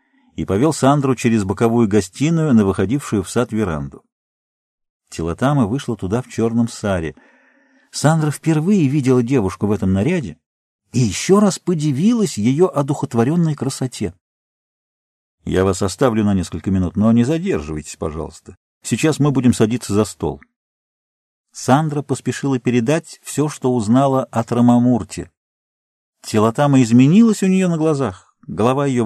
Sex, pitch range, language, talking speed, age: male, 100-135 Hz, Russian, 130 wpm, 50-69